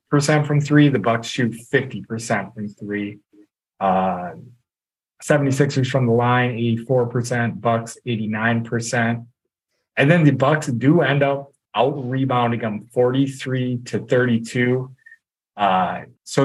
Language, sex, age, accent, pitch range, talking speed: English, male, 20-39, American, 110-135 Hz, 130 wpm